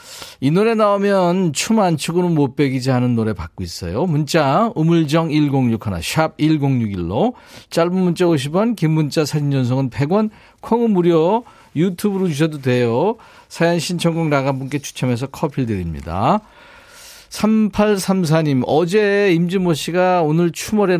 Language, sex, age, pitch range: Korean, male, 40-59, 130-185 Hz